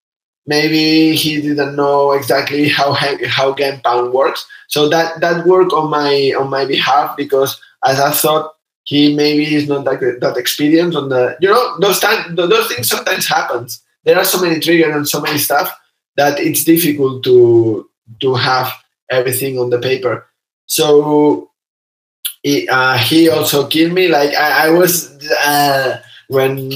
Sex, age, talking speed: male, 20-39, 160 wpm